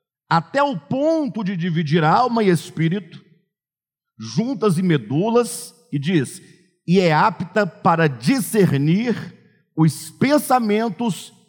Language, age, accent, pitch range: Portuguese, 50-69, Brazilian, 150-205 Hz